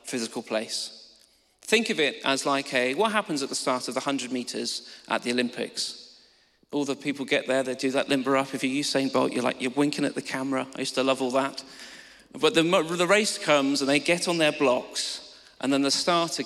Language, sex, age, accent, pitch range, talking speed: English, male, 40-59, British, 135-190 Hz, 225 wpm